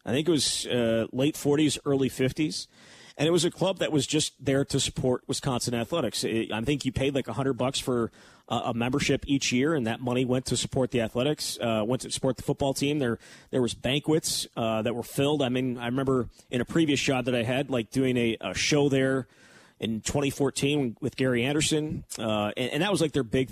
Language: English